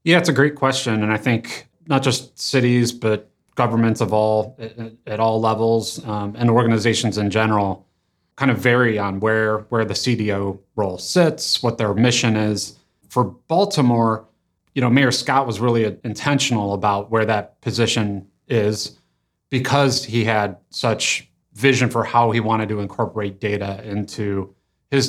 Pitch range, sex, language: 105-125 Hz, male, English